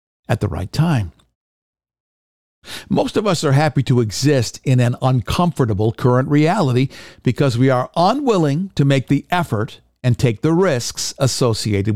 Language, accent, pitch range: English, American, 110-160 Hz